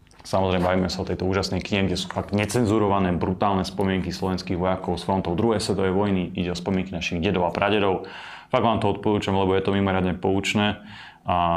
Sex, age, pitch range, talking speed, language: male, 20-39, 90-105 Hz, 190 wpm, Slovak